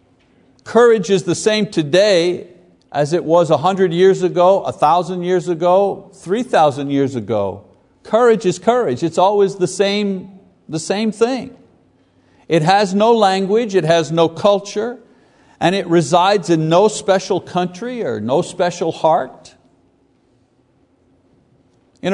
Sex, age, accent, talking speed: male, 60-79, American, 135 wpm